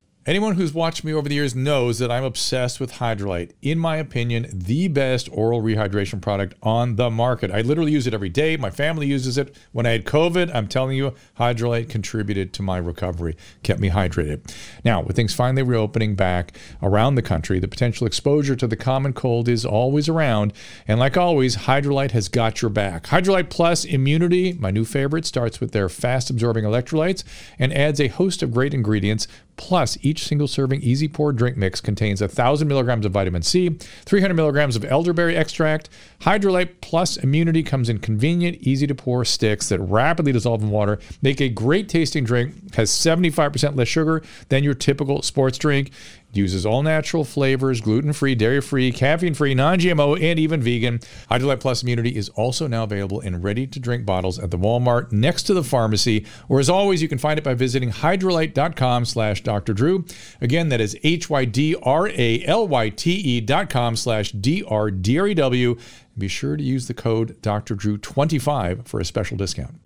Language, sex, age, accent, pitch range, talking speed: English, male, 50-69, American, 110-150 Hz, 170 wpm